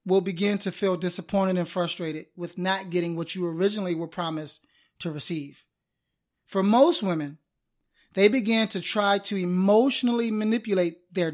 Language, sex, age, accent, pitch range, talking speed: English, male, 20-39, American, 175-220 Hz, 150 wpm